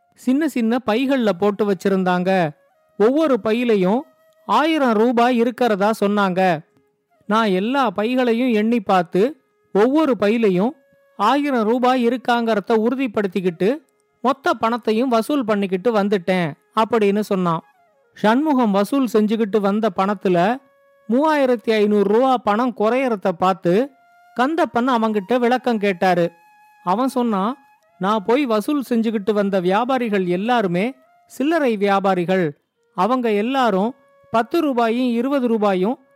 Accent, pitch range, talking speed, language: native, 205-265 Hz, 100 wpm, Tamil